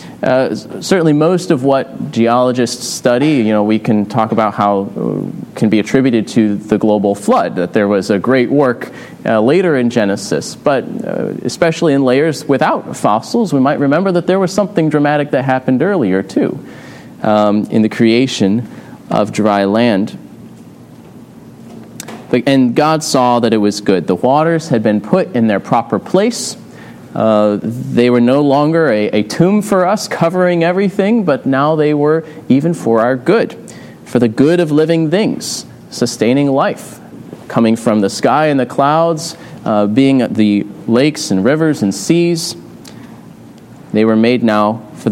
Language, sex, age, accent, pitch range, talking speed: English, male, 30-49, American, 110-155 Hz, 165 wpm